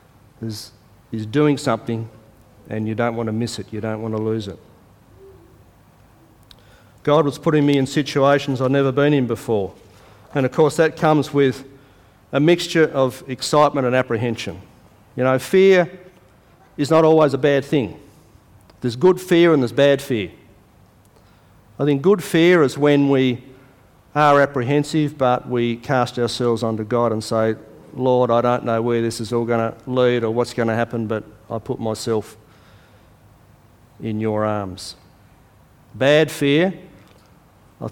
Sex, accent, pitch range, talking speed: male, Australian, 110-140 Hz, 155 wpm